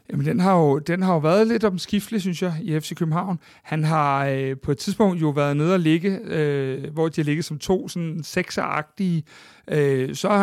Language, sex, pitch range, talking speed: Danish, male, 150-190 Hz, 225 wpm